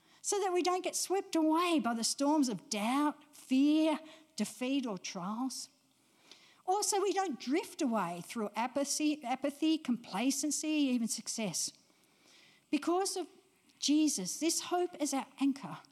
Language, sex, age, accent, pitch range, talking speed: English, female, 60-79, Australian, 235-315 Hz, 135 wpm